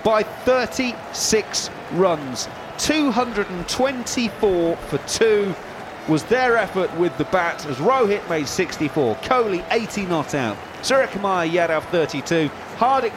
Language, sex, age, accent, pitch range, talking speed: English, male, 30-49, British, 160-215 Hz, 110 wpm